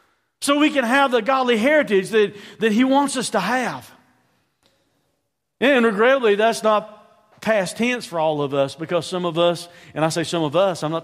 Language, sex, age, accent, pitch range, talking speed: English, male, 50-69, American, 150-215 Hz, 205 wpm